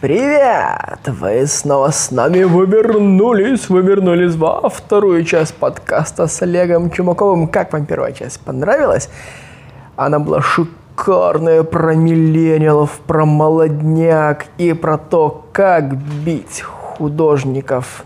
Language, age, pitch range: Russian, 20-39, 145-175 Hz